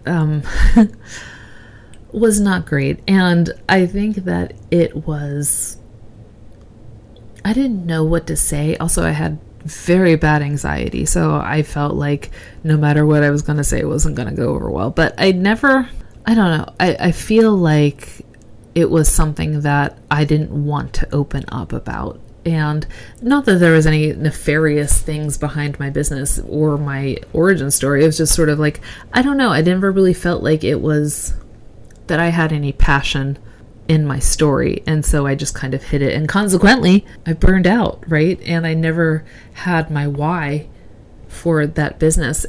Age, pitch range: 30-49, 140-170 Hz